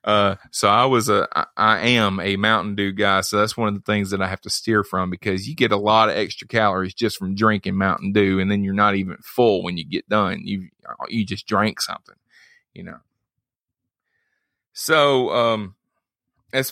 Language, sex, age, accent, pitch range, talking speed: English, male, 30-49, American, 100-125 Hz, 205 wpm